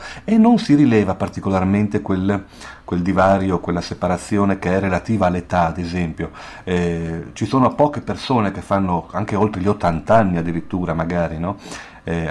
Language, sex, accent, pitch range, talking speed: Italian, male, native, 85-110 Hz, 155 wpm